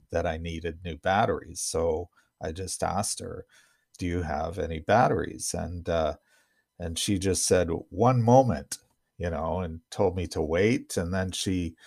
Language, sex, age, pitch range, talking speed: English, male, 50-69, 85-105 Hz, 165 wpm